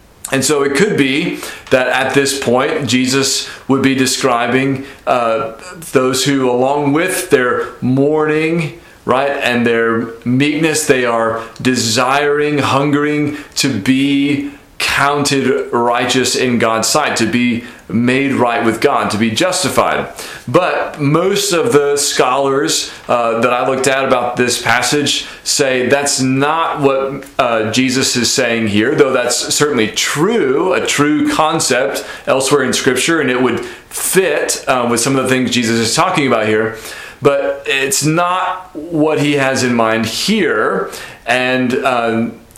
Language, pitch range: English, 120-145 Hz